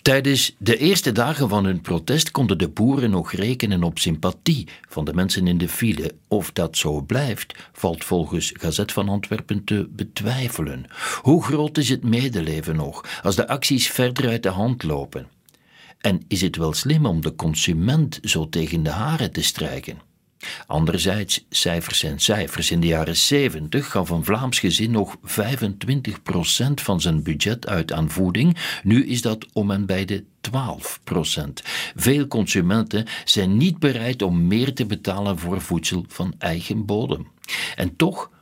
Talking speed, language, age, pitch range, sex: 160 wpm, Dutch, 60-79, 85-125 Hz, male